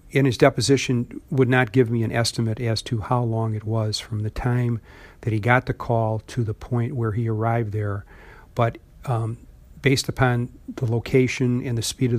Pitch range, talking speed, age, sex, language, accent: 110-125 Hz, 195 wpm, 50-69, male, English, American